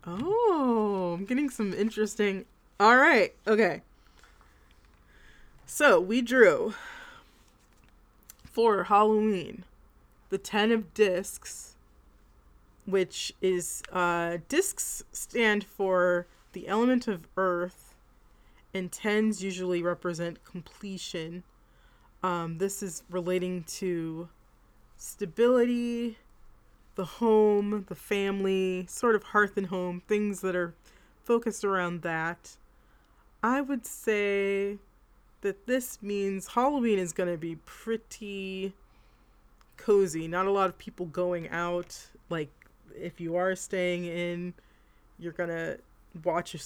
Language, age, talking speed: English, 20-39, 105 wpm